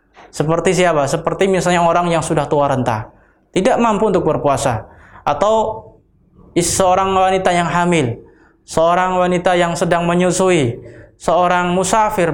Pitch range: 140-180 Hz